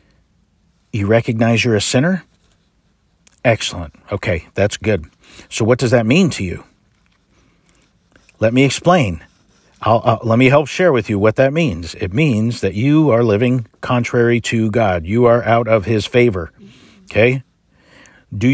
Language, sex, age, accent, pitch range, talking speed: English, male, 50-69, American, 110-145 Hz, 145 wpm